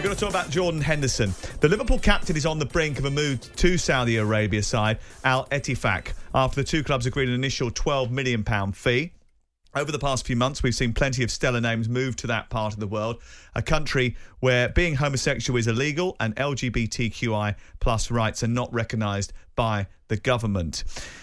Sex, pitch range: male, 110-140 Hz